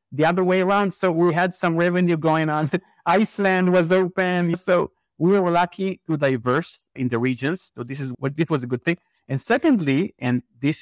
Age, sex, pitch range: 50-69, male, 135-195 Hz